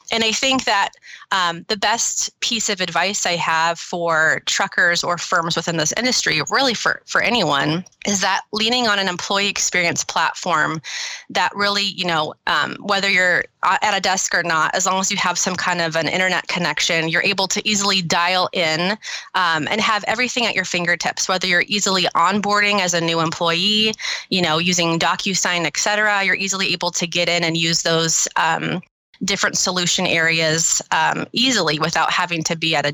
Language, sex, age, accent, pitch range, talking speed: English, female, 20-39, American, 170-200 Hz, 185 wpm